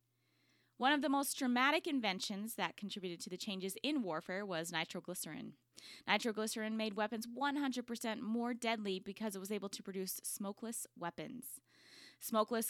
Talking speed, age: 140 wpm, 20-39